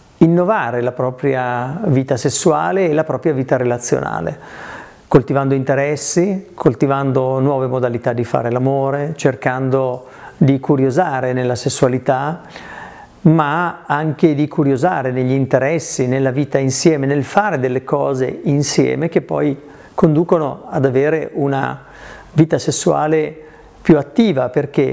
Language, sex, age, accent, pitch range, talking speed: Italian, male, 50-69, native, 130-160 Hz, 115 wpm